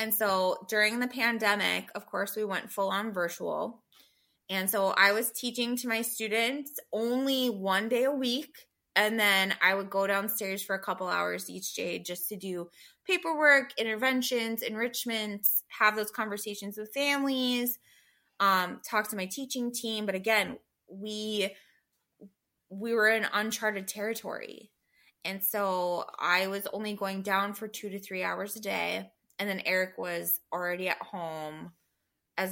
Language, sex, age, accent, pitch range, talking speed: English, female, 20-39, American, 185-220 Hz, 155 wpm